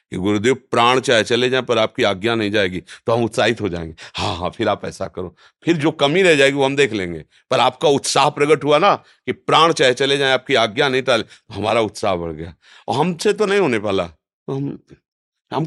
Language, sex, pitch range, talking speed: Hindi, male, 105-150 Hz, 225 wpm